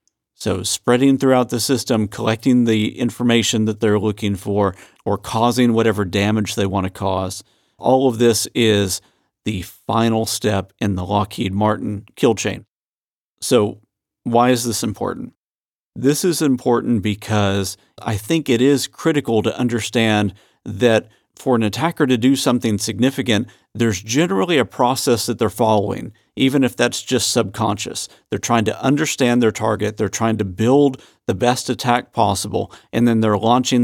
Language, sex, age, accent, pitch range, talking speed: English, male, 50-69, American, 105-125 Hz, 155 wpm